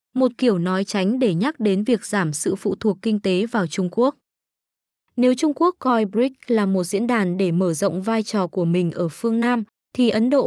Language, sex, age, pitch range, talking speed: Vietnamese, female, 20-39, 190-250 Hz, 225 wpm